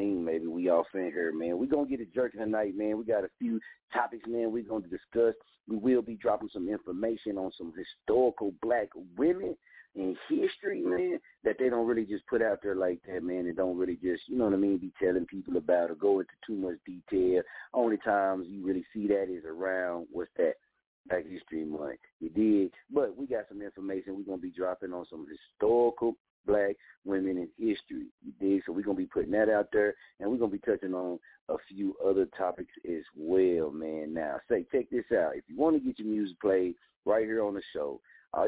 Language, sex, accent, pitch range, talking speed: English, male, American, 95-120 Hz, 220 wpm